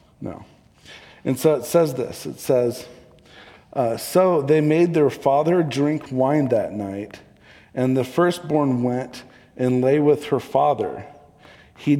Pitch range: 120-145 Hz